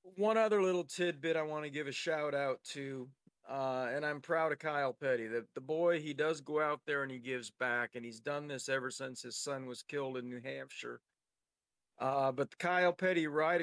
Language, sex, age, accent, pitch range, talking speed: English, male, 40-59, American, 125-150 Hz, 220 wpm